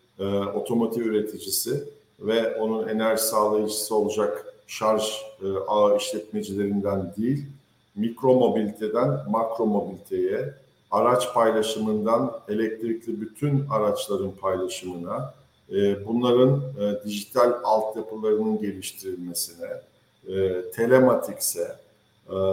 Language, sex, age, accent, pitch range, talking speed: Turkish, male, 50-69, native, 105-130 Hz, 80 wpm